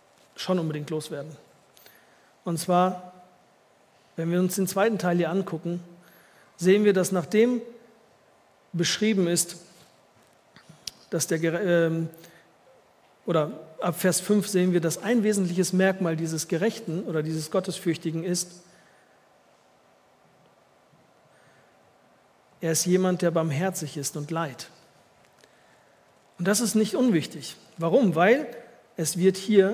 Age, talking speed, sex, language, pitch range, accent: 40-59, 110 wpm, male, German, 170-215 Hz, German